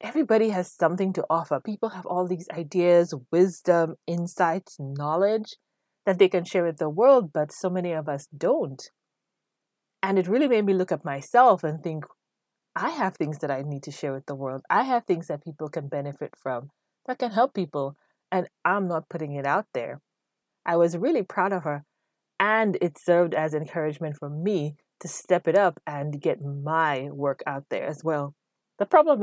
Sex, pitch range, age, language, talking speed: female, 150-190 Hz, 30-49, English, 190 wpm